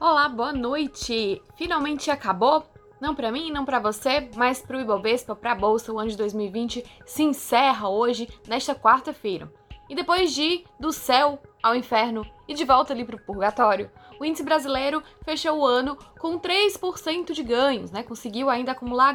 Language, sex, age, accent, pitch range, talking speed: Portuguese, female, 10-29, Brazilian, 235-315 Hz, 165 wpm